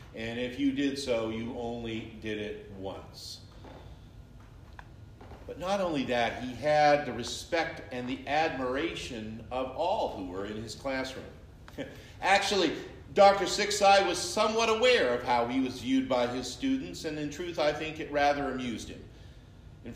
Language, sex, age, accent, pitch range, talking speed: English, male, 50-69, American, 115-160 Hz, 155 wpm